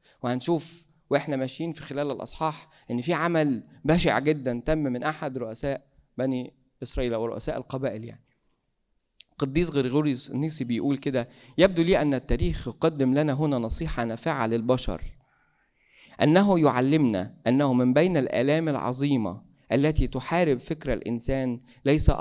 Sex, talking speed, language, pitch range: male, 130 wpm, Arabic, 125-150 Hz